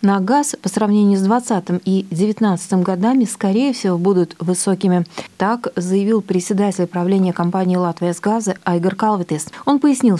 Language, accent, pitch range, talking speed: Russian, native, 180-230 Hz, 145 wpm